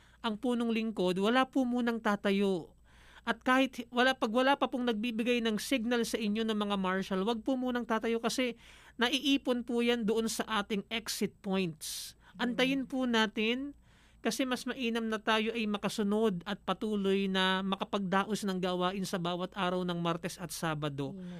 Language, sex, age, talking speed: Filipino, male, 40-59, 165 wpm